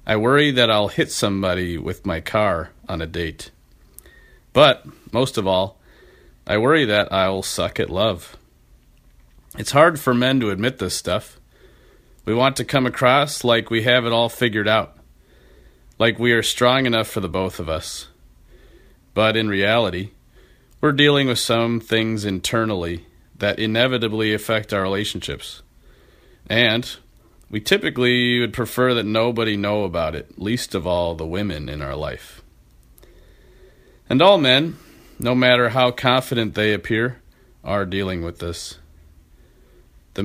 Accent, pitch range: American, 85-120 Hz